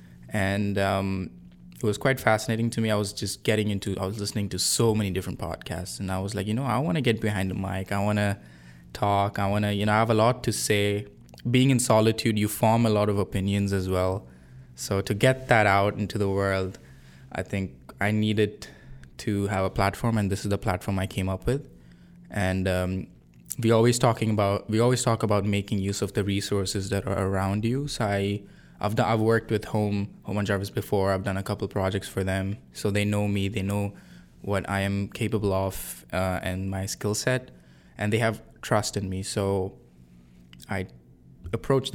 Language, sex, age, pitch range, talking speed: English, male, 20-39, 95-110 Hz, 215 wpm